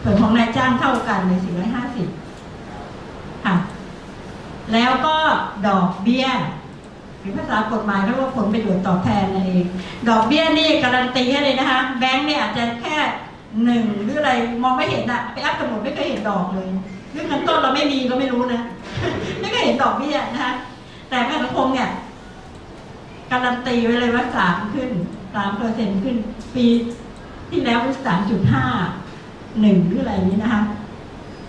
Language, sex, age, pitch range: English, female, 60-79, 200-255 Hz